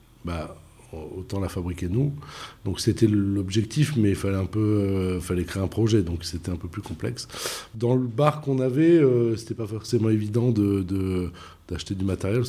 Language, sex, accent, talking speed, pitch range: French, male, French, 190 wpm, 90-115 Hz